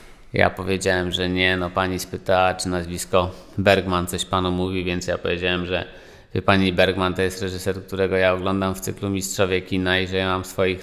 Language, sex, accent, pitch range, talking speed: Polish, male, native, 95-125 Hz, 195 wpm